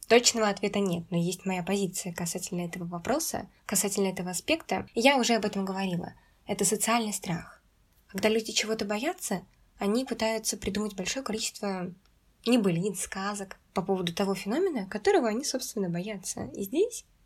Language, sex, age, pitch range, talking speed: Russian, female, 10-29, 195-235 Hz, 145 wpm